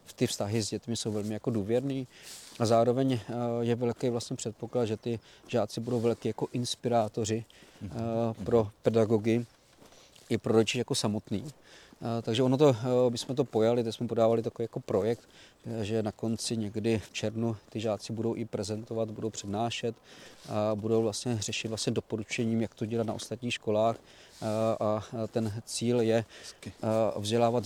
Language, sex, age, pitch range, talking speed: Czech, male, 40-59, 110-120 Hz, 155 wpm